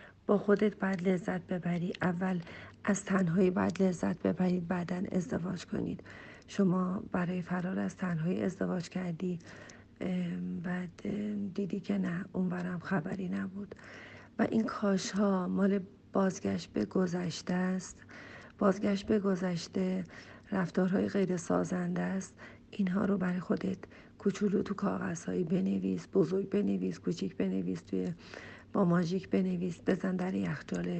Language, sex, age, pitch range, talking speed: Persian, female, 40-59, 180-200 Hz, 120 wpm